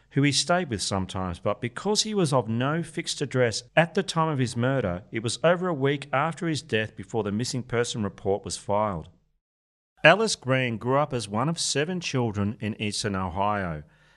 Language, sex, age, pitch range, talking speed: English, male, 40-59, 105-150 Hz, 195 wpm